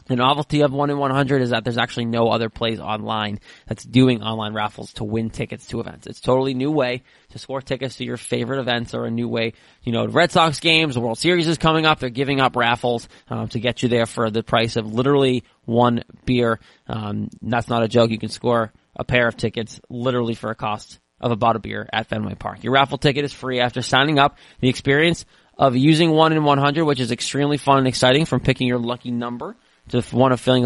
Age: 20-39